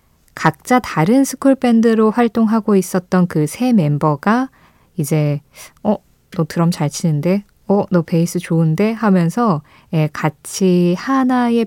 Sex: female